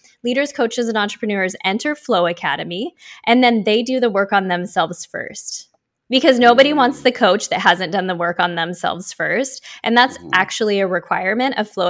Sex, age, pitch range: female, 10-29, 195-245 Hz